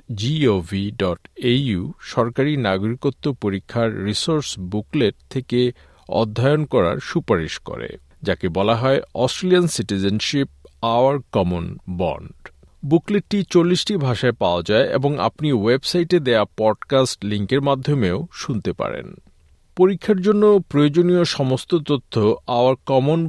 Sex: male